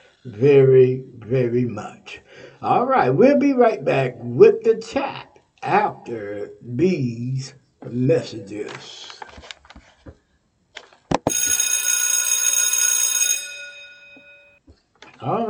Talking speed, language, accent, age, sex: 60 wpm, English, American, 60-79, male